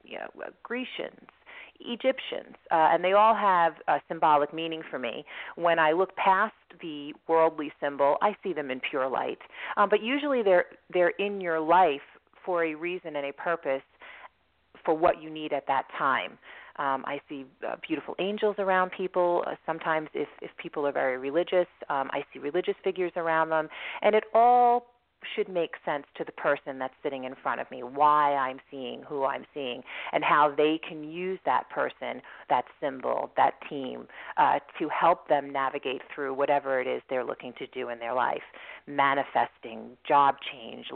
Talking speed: 180 wpm